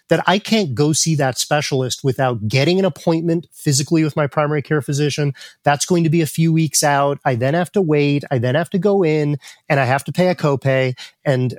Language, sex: English, male